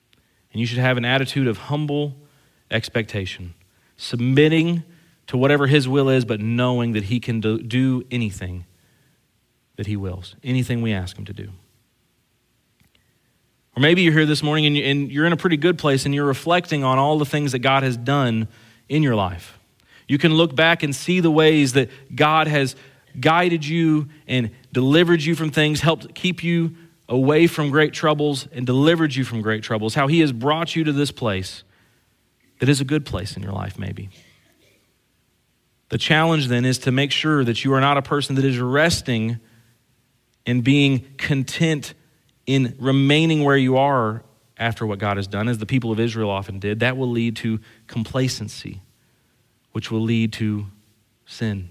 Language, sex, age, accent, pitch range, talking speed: English, male, 40-59, American, 110-150 Hz, 175 wpm